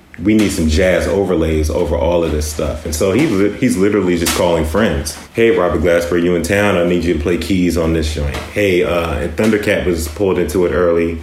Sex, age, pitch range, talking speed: male, 30-49, 80-85 Hz, 220 wpm